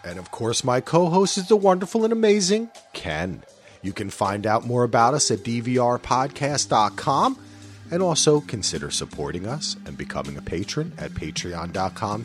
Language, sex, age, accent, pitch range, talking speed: English, male, 40-59, American, 105-150 Hz, 150 wpm